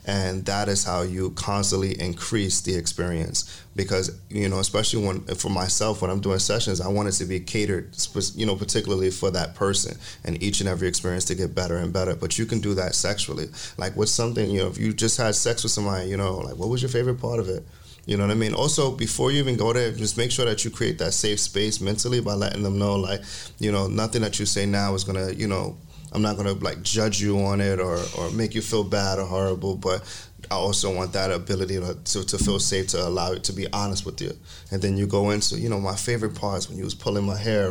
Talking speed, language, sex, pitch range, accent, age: 250 wpm, English, male, 95-110 Hz, American, 30-49